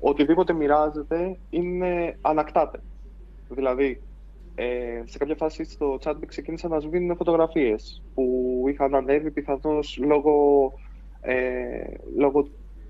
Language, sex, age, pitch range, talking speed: Greek, male, 20-39, 120-150 Hz, 100 wpm